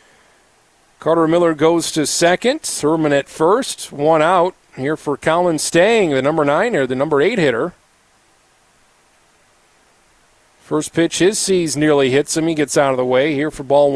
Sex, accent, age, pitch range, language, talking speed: male, American, 40-59, 140-185 Hz, English, 165 wpm